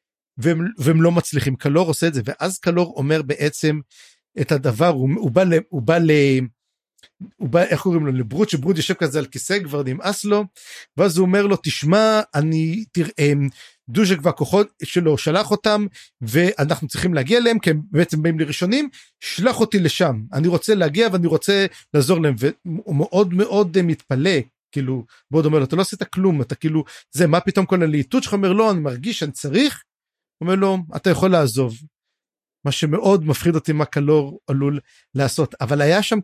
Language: Hebrew